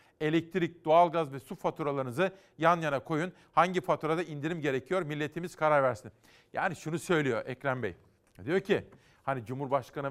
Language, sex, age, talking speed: Turkish, male, 40-59, 140 wpm